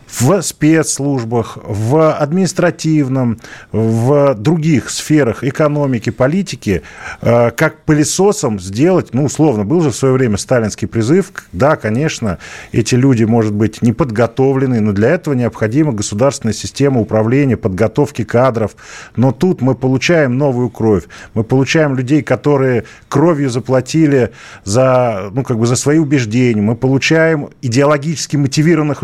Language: Russian